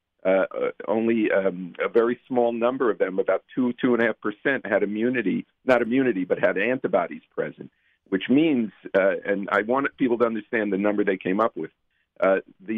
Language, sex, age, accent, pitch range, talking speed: English, male, 50-69, American, 105-135 Hz, 190 wpm